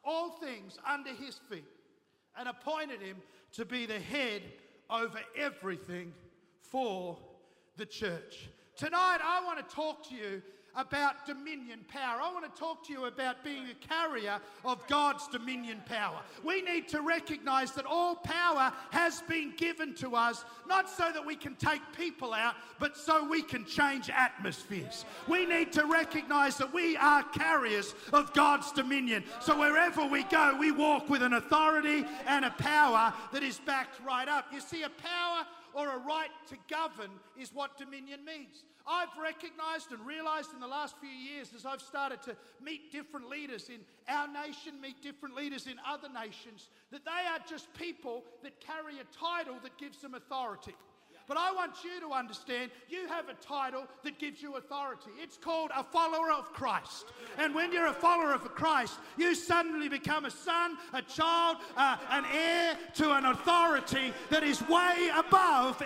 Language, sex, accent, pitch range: English, male, Australian, 255-320 Hz